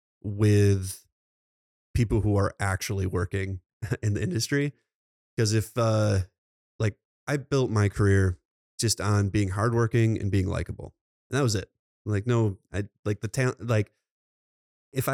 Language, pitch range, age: English, 95-105 Hz, 20-39